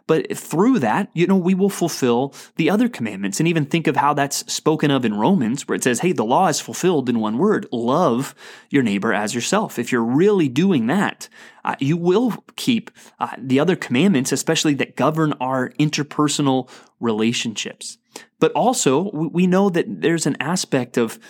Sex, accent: male, American